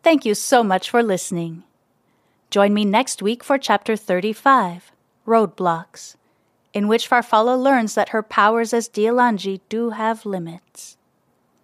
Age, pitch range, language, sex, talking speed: 30-49, 190-245 Hz, English, female, 135 wpm